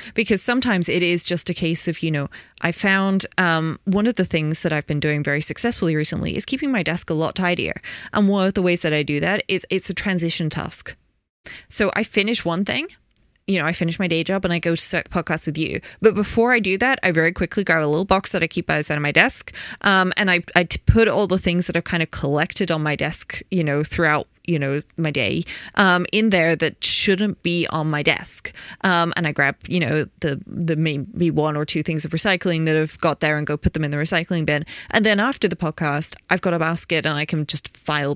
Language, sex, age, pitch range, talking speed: English, female, 20-39, 155-195 Hz, 250 wpm